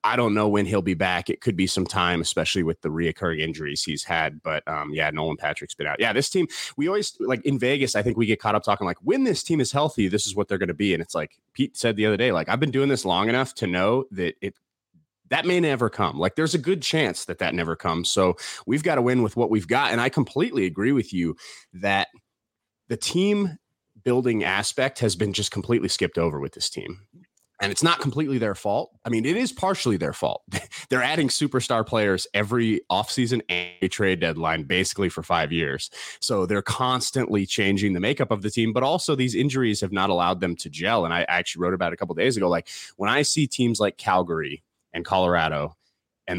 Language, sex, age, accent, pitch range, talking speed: English, male, 30-49, American, 90-125 Hz, 235 wpm